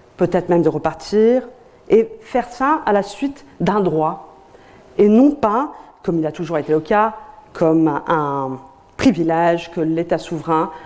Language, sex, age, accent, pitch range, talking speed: French, female, 40-59, French, 160-220 Hz, 155 wpm